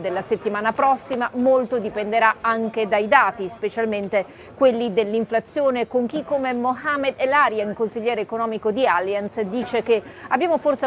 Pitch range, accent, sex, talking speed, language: 210-245 Hz, native, female, 135 wpm, Italian